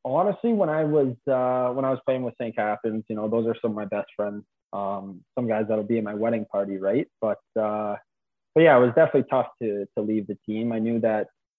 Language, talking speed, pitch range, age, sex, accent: English, 245 wpm, 105-130 Hz, 20-39, male, American